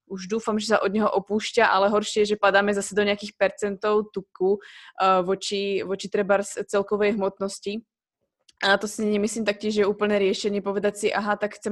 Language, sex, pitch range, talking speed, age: Slovak, female, 195-215 Hz, 190 wpm, 20-39